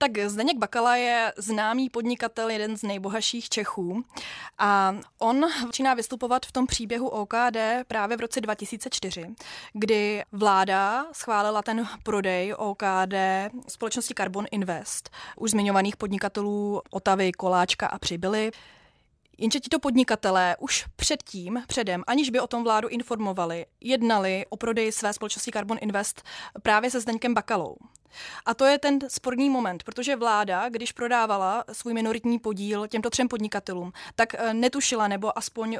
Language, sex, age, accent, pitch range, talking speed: Czech, female, 20-39, native, 205-230 Hz, 135 wpm